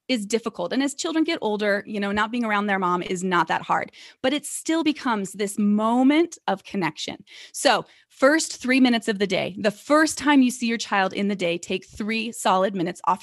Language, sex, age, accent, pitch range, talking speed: English, female, 20-39, American, 205-265 Hz, 220 wpm